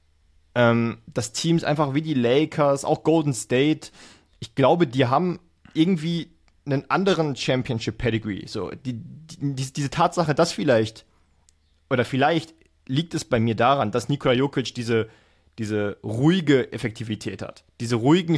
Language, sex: German, male